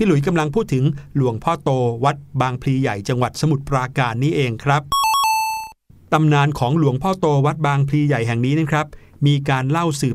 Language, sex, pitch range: Thai, male, 130-165 Hz